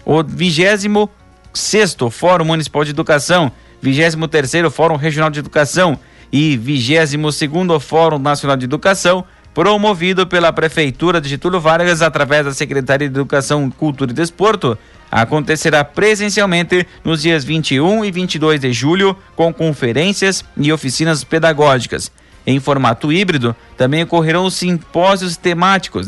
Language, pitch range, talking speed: Portuguese, 140-180 Hz, 120 wpm